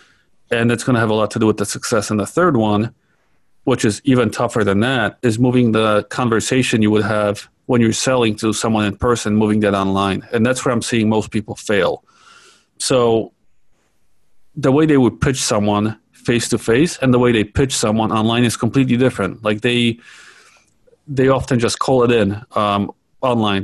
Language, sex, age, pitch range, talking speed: English, male, 40-59, 110-130 Hz, 190 wpm